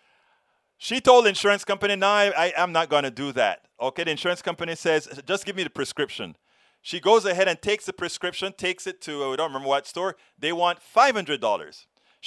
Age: 30-49